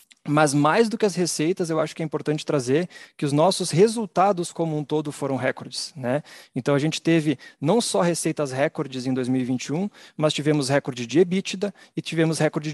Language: Portuguese